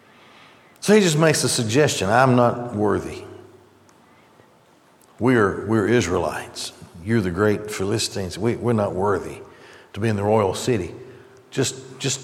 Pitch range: 115-150 Hz